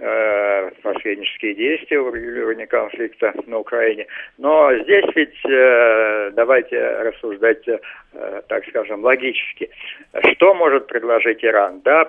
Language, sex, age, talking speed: Russian, male, 50-69, 95 wpm